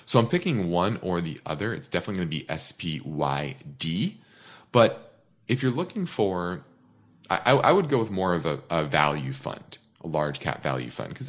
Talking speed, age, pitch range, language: 190 wpm, 30-49, 80-115 Hz, English